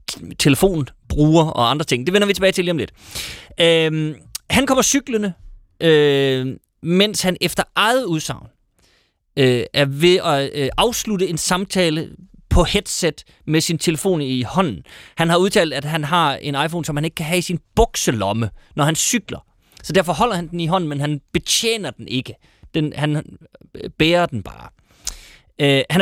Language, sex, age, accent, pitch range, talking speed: Danish, male, 30-49, native, 130-180 Hz, 175 wpm